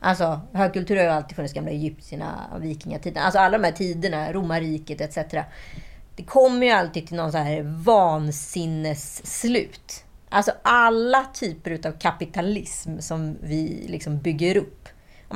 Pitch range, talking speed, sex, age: 160-215 Hz, 145 wpm, female, 30-49